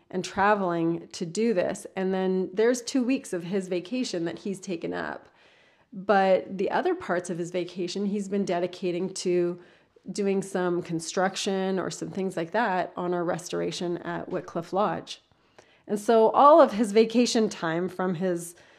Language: English